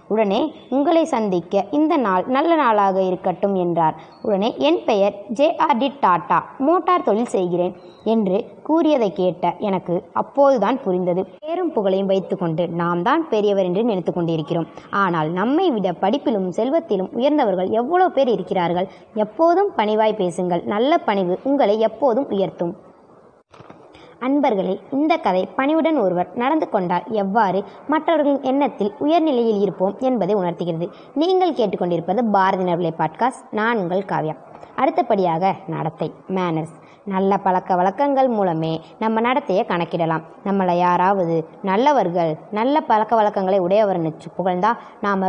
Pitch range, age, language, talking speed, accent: 180-245 Hz, 20-39, Tamil, 115 wpm, native